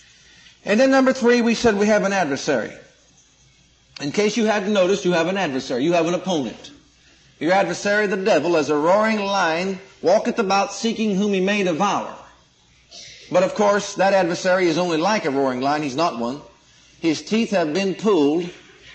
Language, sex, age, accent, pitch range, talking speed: English, male, 50-69, American, 180-230 Hz, 180 wpm